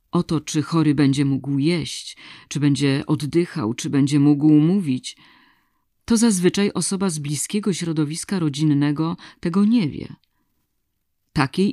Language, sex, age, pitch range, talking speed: Polish, female, 40-59, 140-170 Hz, 125 wpm